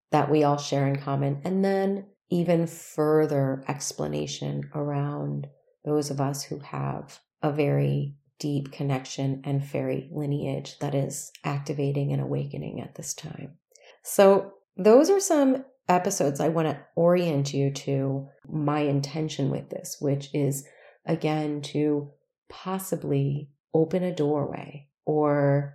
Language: English